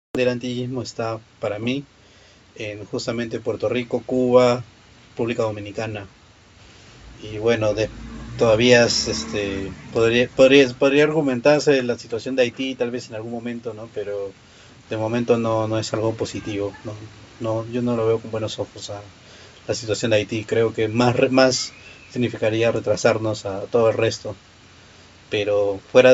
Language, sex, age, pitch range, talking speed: Spanish, male, 30-49, 105-125 Hz, 150 wpm